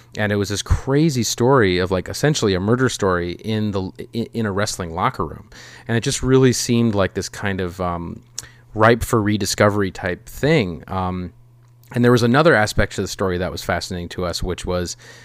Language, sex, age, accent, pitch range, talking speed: English, male, 30-49, American, 95-120 Hz, 195 wpm